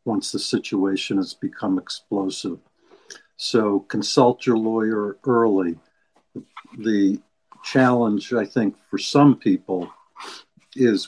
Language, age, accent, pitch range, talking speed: English, 60-79, American, 100-115 Hz, 105 wpm